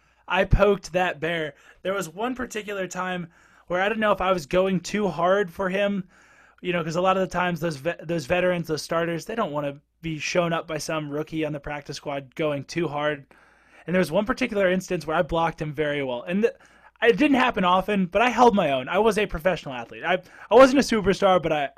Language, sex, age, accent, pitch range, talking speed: English, male, 20-39, American, 165-205 Hz, 240 wpm